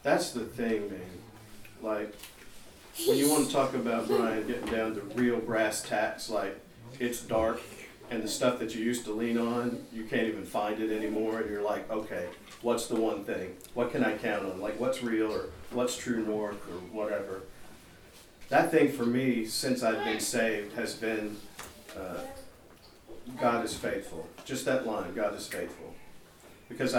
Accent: American